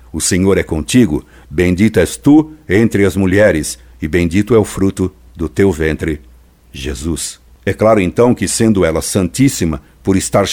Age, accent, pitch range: 60-79, Brazilian, 80-110 Hz